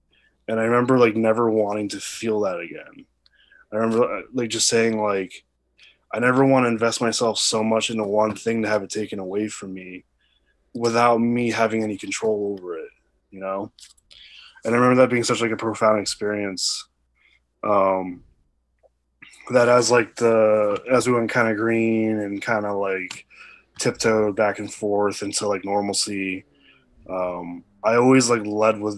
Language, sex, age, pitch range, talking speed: English, male, 20-39, 100-115 Hz, 170 wpm